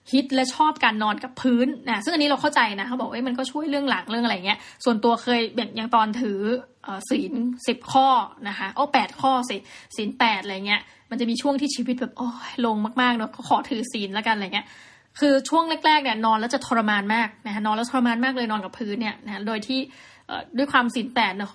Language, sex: Thai, female